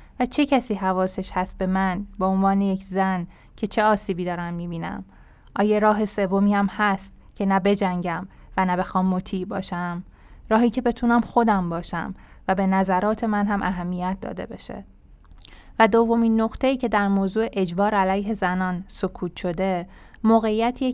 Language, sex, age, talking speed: Persian, female, 20-39, 155 wpm